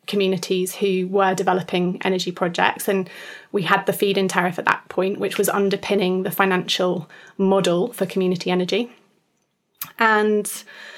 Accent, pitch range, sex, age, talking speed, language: British, 180-195 Hz, female, 20-39, 135 wpm, English